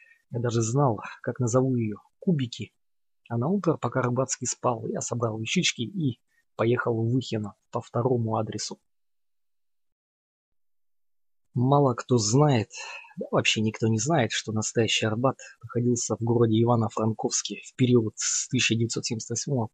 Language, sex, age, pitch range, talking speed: Russian, male, 20-39, 110-130 Hz, 130 wpm